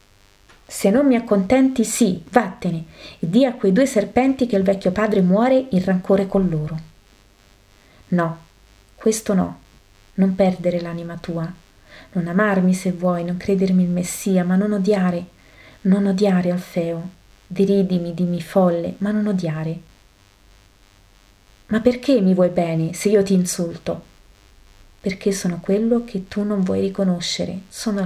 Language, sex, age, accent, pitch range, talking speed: Italian, female, 30-49, native, 160-200 Hz, 140 wpm